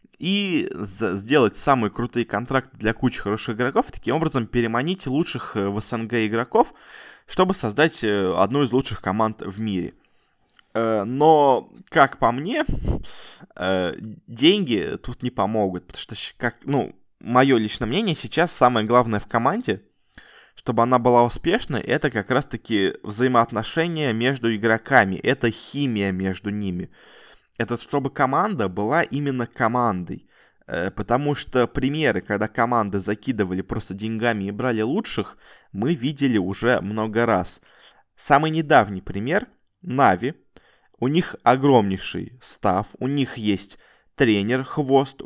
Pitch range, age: 105-135 Hz, 20-39